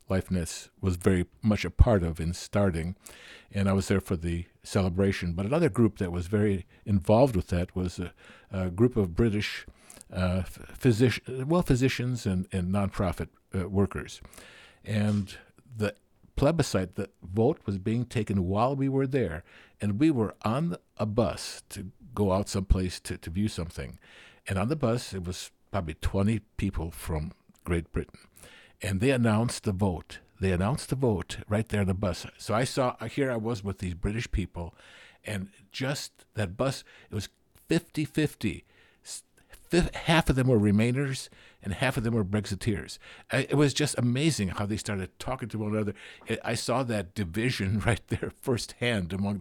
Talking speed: 170 wpm